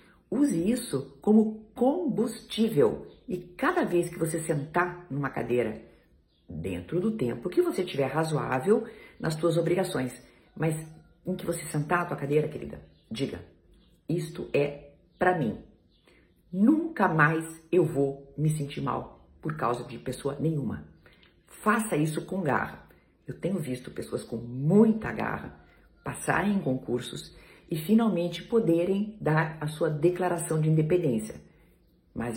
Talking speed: 135 wpm